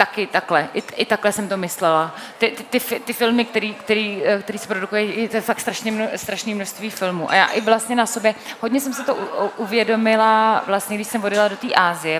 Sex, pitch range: female, 165-210 Hz